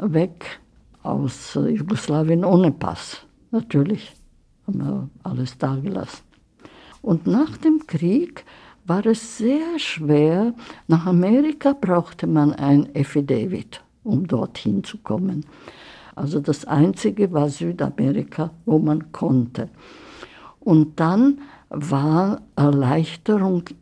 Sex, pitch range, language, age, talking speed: female, 145-215 Hz, German, 60-79, 105 wpm